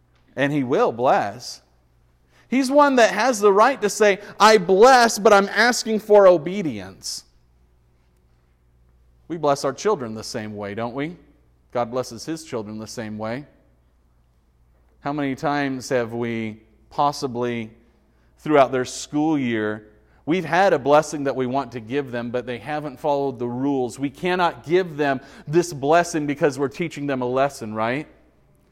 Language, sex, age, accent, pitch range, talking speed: English, male, 40-59, American, 115-170 Hz, 155 wpm